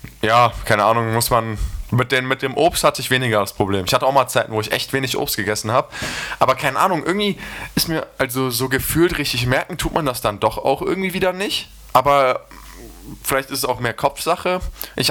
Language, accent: German, German